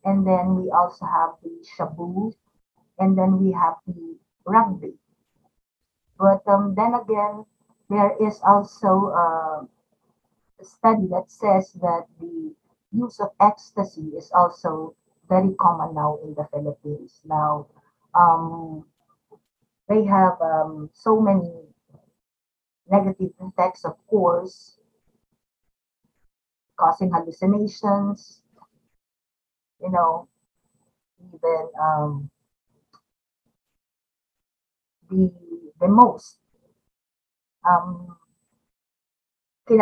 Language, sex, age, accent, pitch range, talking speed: Filipino, female, 50-69, native, 165-200 Hz, 80 wpm